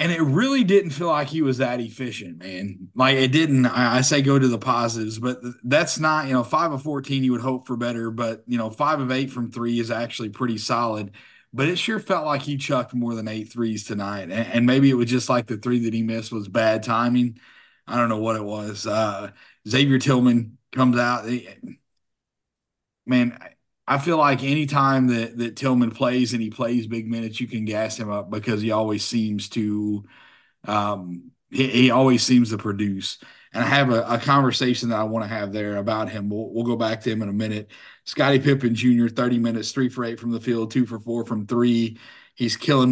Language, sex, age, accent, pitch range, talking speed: English, male, 30-49, American, 110-130 Hz, 215 wpm